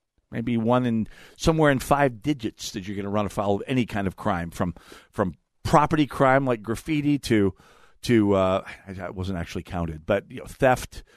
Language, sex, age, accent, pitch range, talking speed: English, male, 50-69, American, 105-160 Hz, 190 wpm